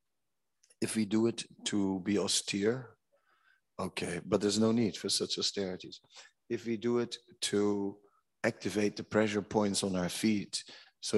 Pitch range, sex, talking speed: 90-115 Hz, male, 150 wpm